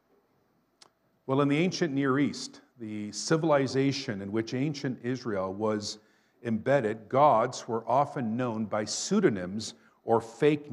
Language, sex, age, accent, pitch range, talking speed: English, male, 50-69, American, 120-160 Hz, 125 wpm